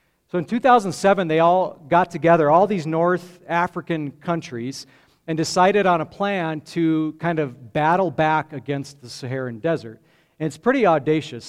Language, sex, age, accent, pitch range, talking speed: English, male, 50-69, American, 140-180 Hz, 155 wpm